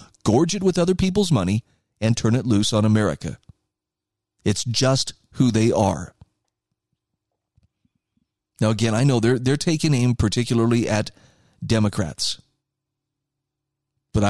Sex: male